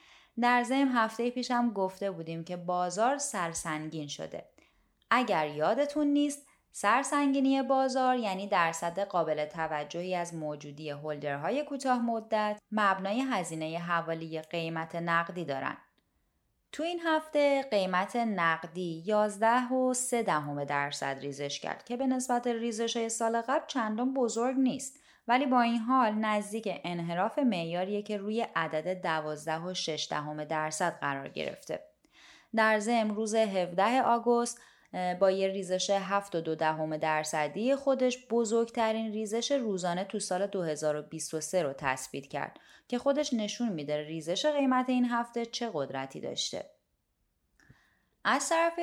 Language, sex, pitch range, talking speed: Persian, female, 165-250 Hz, 125 wpm